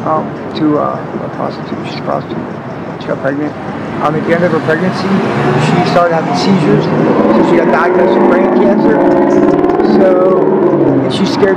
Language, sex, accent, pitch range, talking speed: English, male, American, 170-205 Hz, 170 wpm